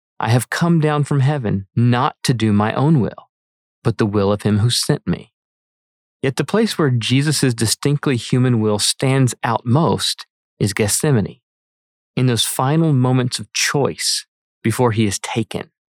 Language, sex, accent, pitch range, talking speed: English, male, American, 105-140 Hz, 160 wpm